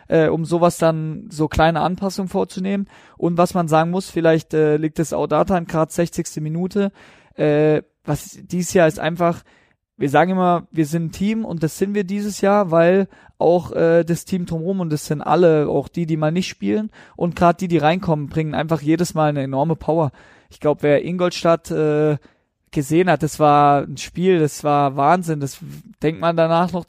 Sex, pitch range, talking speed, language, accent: male, 160-190 Hz, 195 wpm, German, German